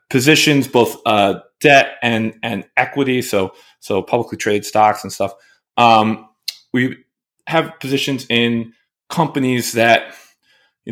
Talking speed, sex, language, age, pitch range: 120 wpm, male, English, 20-39, 110-135 Hz